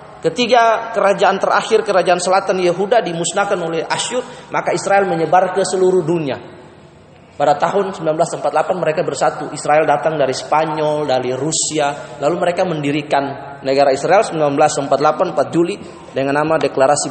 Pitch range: 175-285 Hz